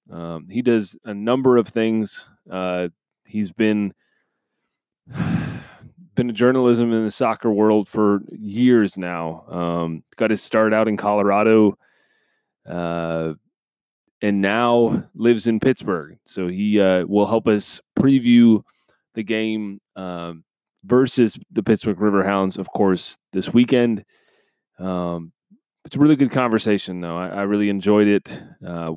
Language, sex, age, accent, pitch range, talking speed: English, male, 30-49, American, 100-125 Hz, 135 wpm